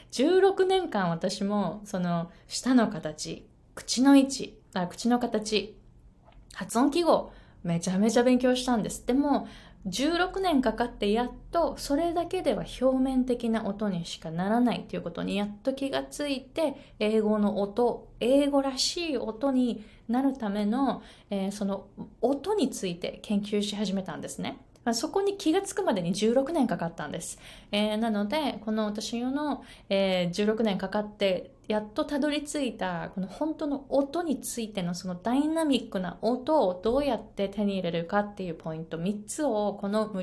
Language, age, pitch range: Japanese, 20-39, 185-265 Hz